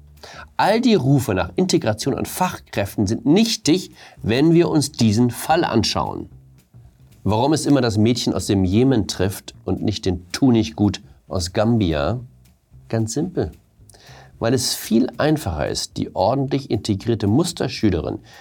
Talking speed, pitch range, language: 140 wpm, 95-145 Hz, German